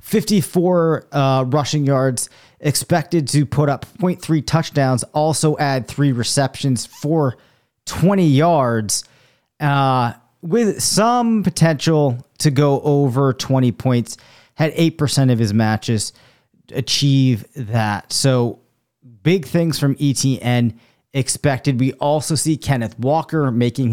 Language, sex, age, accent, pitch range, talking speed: English, male, 30-49, American, 120-150 Hz, 115 wpm